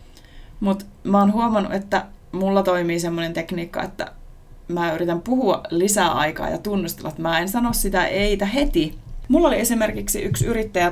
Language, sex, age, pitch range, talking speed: Finnish, female, 30-49, 170-200 Hz, 160 wpm